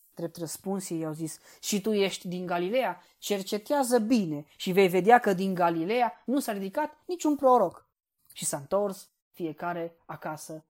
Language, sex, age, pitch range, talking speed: Romanian, female, 20-39, 160-200 Hz, 155 wpm